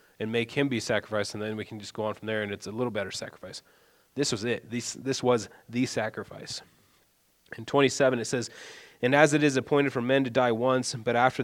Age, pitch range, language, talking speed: 20-39, 110-130 Hz, English, 230 wpm